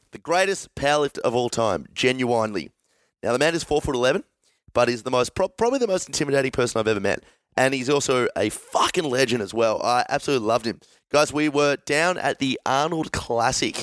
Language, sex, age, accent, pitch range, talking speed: English, male, 30-49, Australian, 115-155 Hz, 200 wpm